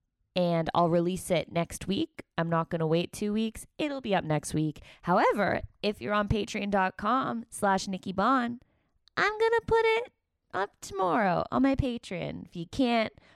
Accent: American